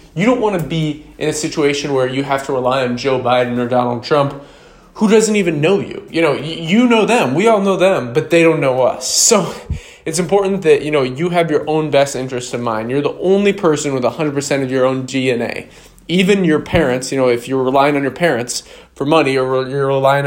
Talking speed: 230 wpm